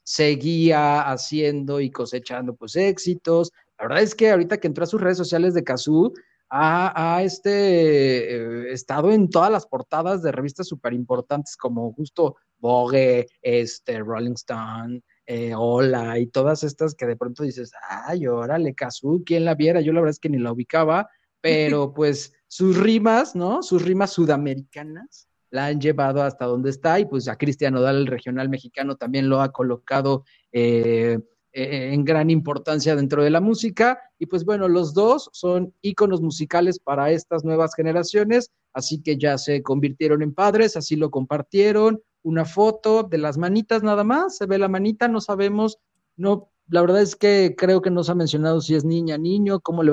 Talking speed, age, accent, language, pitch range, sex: 175 wpm, 30-49, Mexican, English, 135-180 Hz, male